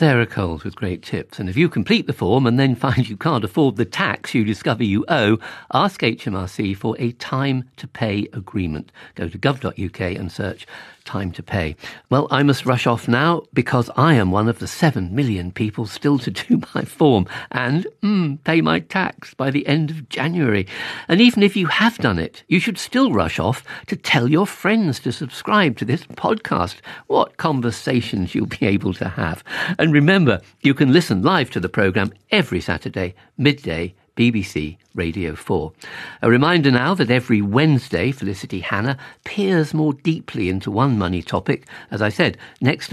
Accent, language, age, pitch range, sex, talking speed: British, English, 50-69, 100-145 Hz, male, 180 wpm